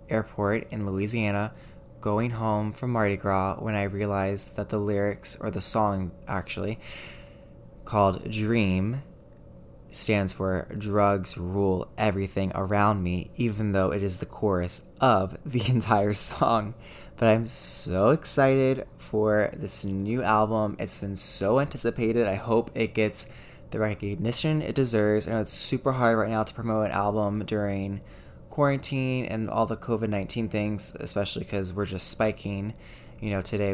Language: English